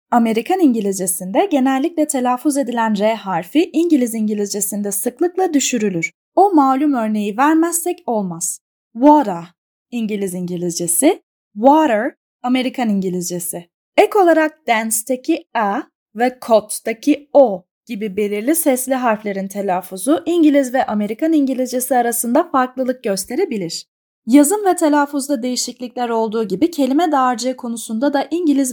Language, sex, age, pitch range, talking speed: Turkish, female, 10-29, 205-295 Hz, 110 wpm